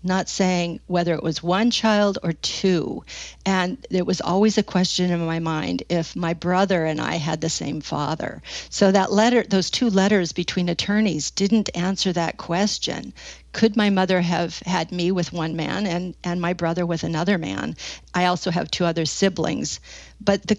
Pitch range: 175-210 Hz